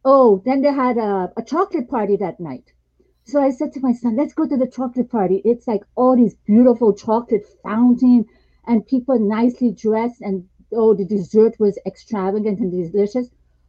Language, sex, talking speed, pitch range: English, female, 180 wpm, 175-240 Hz